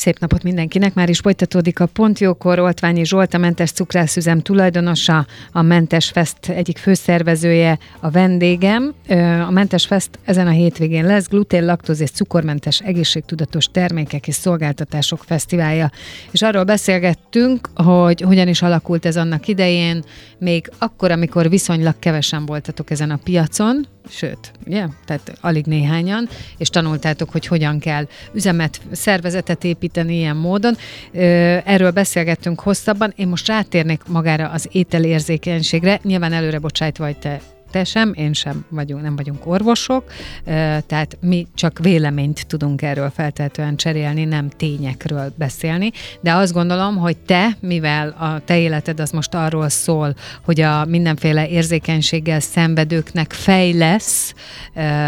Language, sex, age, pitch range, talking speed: Hungarian, female, 30-49, 155-180 Hz, 130 wpm